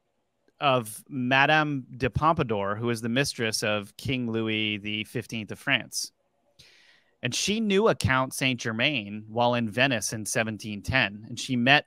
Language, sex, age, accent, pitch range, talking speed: English, male, 30-49, American, 110-135 Hz, 140 wpm